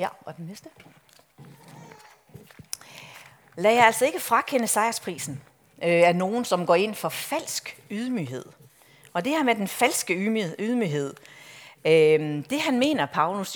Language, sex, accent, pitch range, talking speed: Danish, female, native, 155-225 Hz, 125 wpm